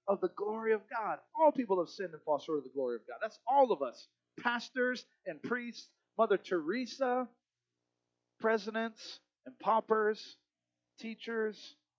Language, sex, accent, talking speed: English, male, American, 150 wpm